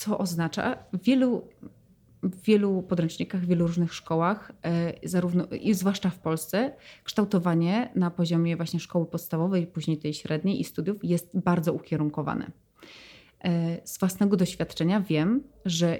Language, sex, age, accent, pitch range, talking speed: Polish, female, 30-49, native, 165-190 Hz, 130 wpm